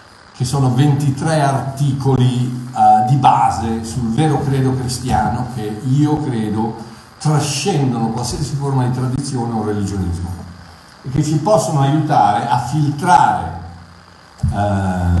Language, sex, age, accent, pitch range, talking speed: Italian, male, 50-69, native, 105-150 Hz, 115 wpm